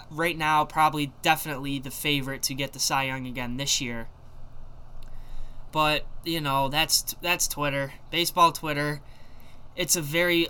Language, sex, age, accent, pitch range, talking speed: English, male, 10-29, American, 120-165 Hz, 145 wpm